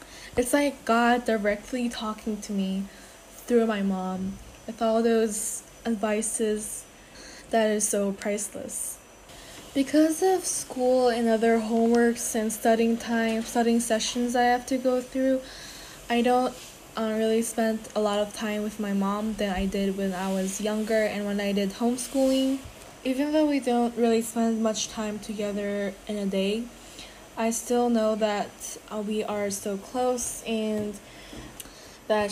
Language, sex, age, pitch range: Korean, female, 10-29, 210-240 Hz